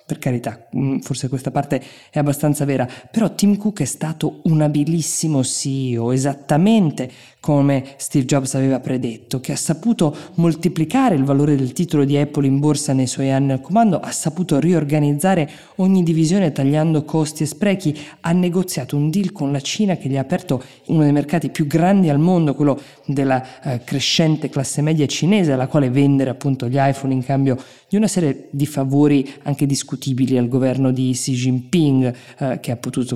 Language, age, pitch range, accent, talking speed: Italian, 20-39, 130-155 Hz, native, 175 wpm